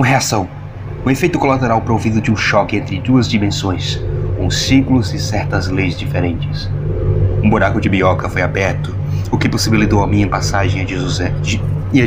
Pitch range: 95-125 Hz